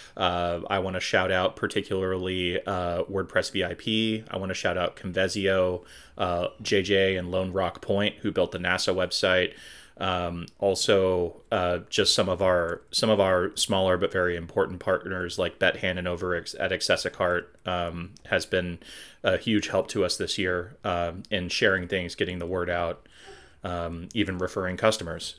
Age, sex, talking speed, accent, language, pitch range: 30-49, male, 165 wpm, American, English, 90-100 Hz